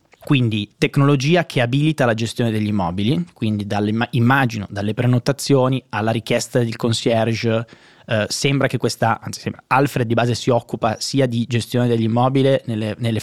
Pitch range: 110-135 Hz